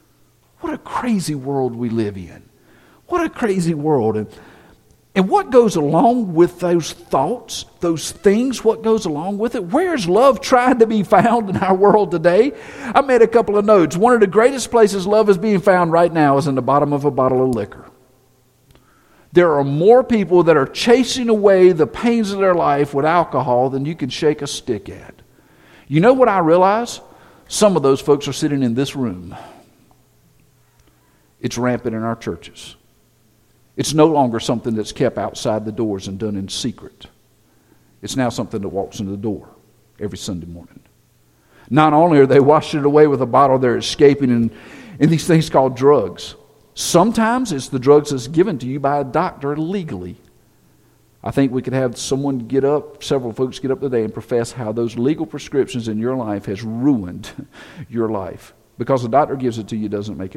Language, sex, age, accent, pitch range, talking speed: English, male, 50-69, American, 120-190 Hz, 190 wpm